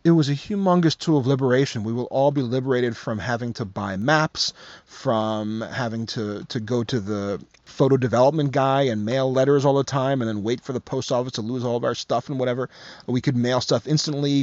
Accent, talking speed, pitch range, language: American, 220 wpm, 115-140 Hz, English